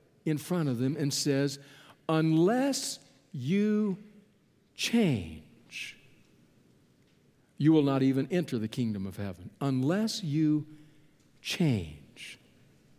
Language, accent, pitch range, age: English, American, 150-205 Hz, 60-79